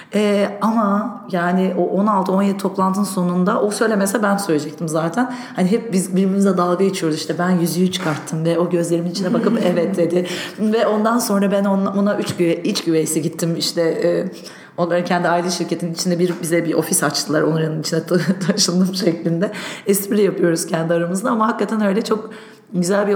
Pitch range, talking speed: 175-225 Hz, 175 wpm